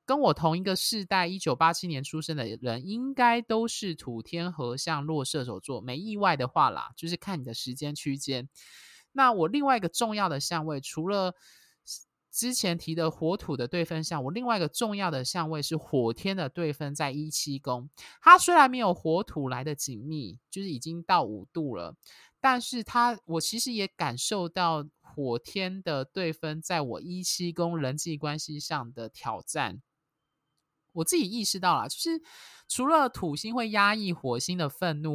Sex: male